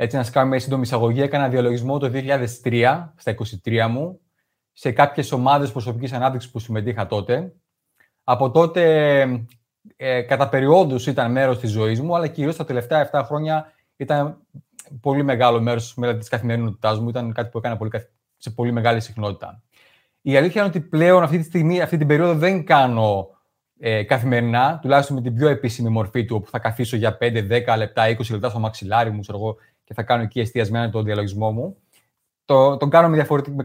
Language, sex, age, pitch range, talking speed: Greek, male, 20-39, 115-150 Hz, 170 wpm